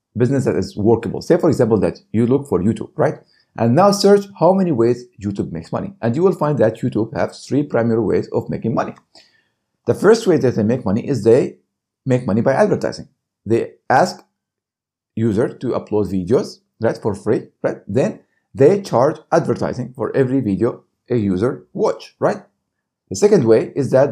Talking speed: 185 wpm